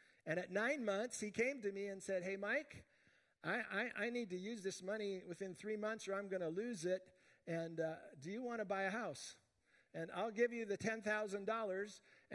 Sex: male